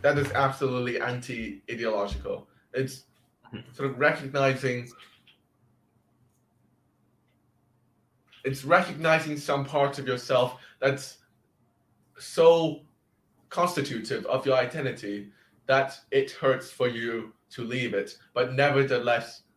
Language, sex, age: English, male, 20-39